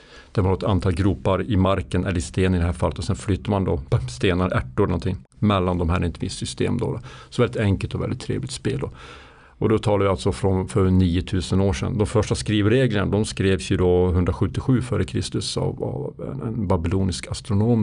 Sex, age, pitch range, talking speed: male, 50-69, 95-115 Hz, 200 wpm